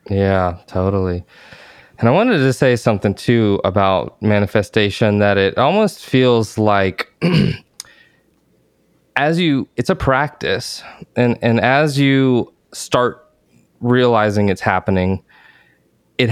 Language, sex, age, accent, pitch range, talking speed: English, male, 20-39, American, 100-125 Hz, 110 wpm